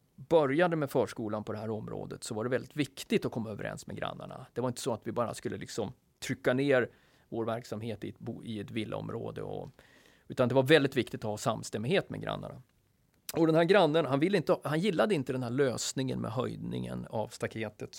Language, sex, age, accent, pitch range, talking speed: Swedish, male, 30-49, native, 110-145 Hz, 215 wpm